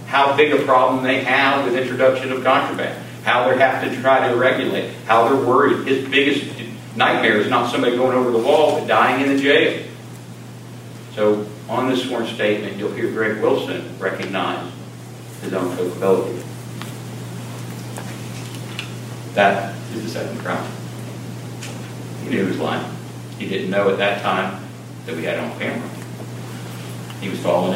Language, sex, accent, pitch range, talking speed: English, male, American, 90-125 Hz, 155 wpm